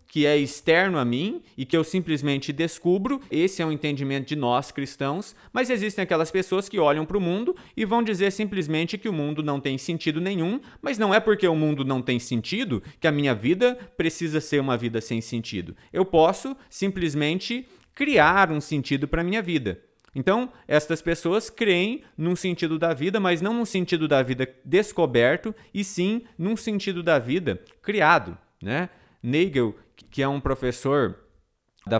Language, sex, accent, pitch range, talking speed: Portuguese, male, Brazilian, 125-185 Hz, 180 wpm